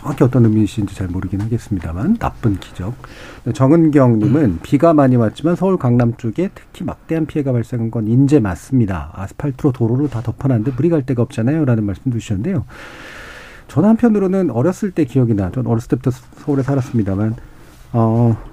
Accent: native